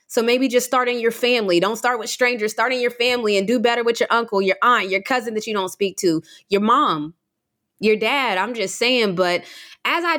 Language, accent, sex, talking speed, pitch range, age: English, American, female, 230 wpm, 215-300 Hz, 20-39